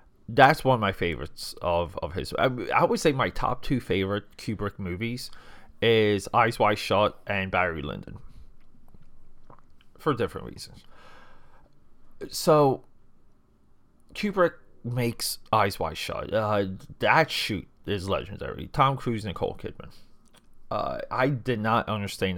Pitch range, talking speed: 95-120 Hz, 130 wpm